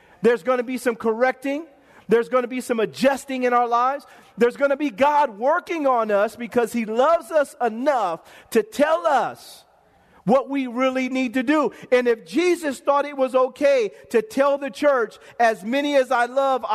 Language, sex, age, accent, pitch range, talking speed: English, male, 40-59, American, 250-305 Hz, 190 wpm